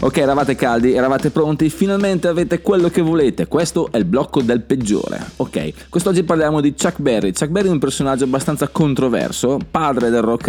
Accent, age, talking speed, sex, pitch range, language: native, 20-39, 185 wpm, male, 115-160 Hz, Italian